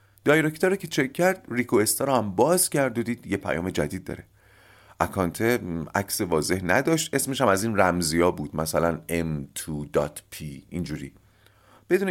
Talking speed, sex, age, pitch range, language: 150 wpm, male, 40-59, 85-130 Hz, Persian